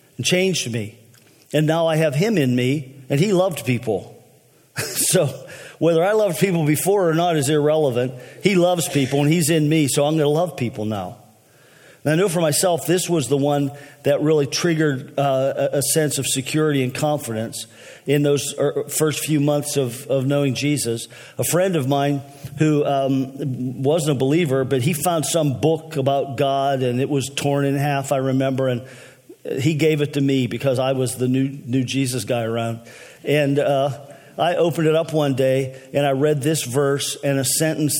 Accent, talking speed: American, 195 wpm